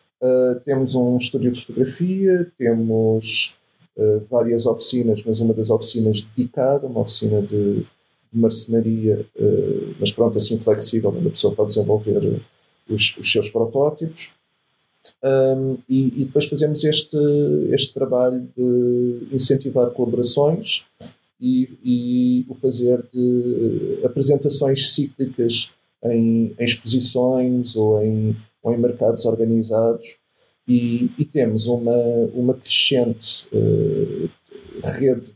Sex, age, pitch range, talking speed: male, 40-59, 115-135 Hz, 120 wpm